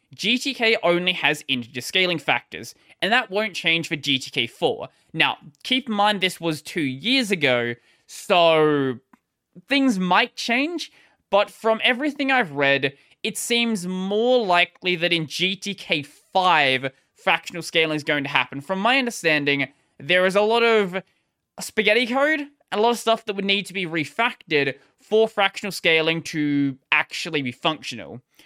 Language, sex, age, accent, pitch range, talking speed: English, male, 20-39, Australian, 155-225 Hz, 150 wpm